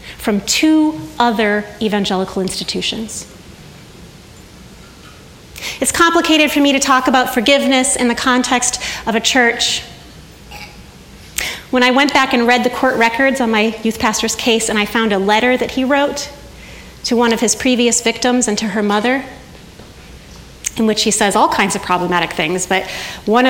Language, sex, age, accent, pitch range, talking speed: English, female, 30-49, American, 210-265 Hz, 160 wpm